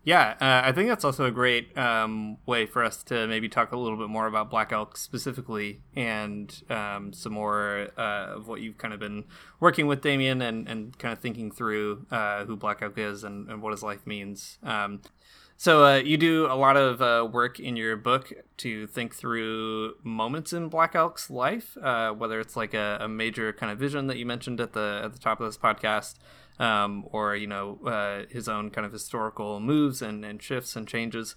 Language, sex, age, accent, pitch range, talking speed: English, male, 20-39, American, 110-135 Hz, 215 wpm